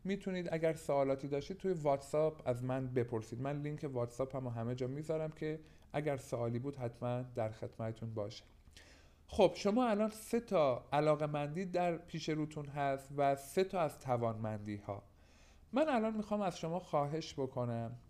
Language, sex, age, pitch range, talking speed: Persian, male, 50-69, 120-170 Hz, 160 wpm